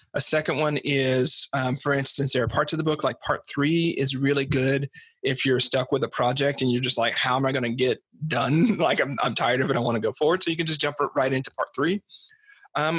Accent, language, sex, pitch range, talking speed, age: American, English, male, 125-150 Hz, 265 wpm, 40-59